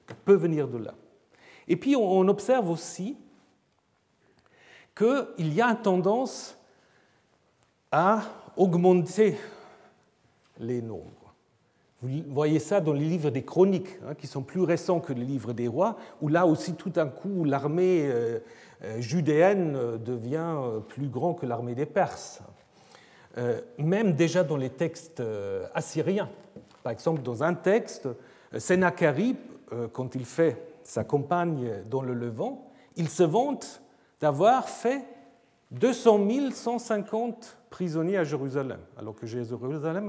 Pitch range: 145-210 Hz